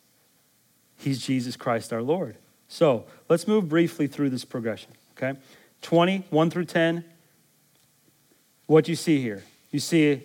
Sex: male